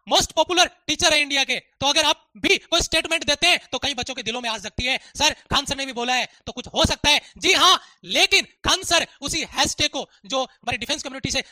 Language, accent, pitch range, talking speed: Hindi, native, 265-335 Hz, 230 wpm